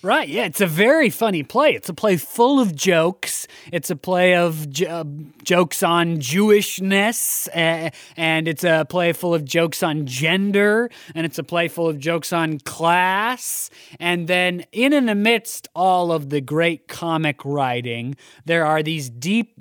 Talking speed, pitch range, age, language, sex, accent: 170 wpm, 150-200 Hz, 20-39, English, male, American